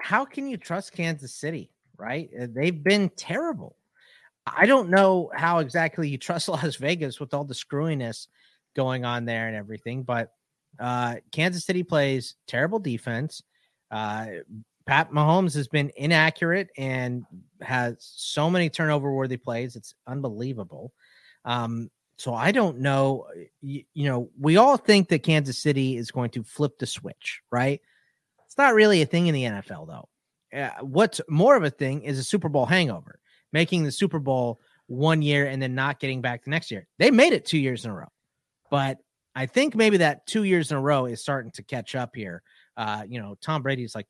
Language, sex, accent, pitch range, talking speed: English, male, American, 120-160 Hz, 185 wpm